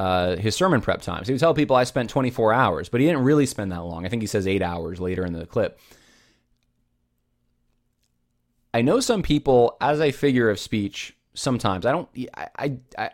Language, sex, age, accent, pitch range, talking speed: English, male, 20-39, American, 95-125 Hz, 205 wpm